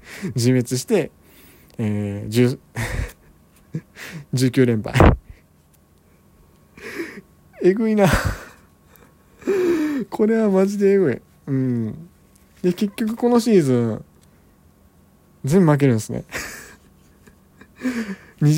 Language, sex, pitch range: Japanese, male, 105-170 Hz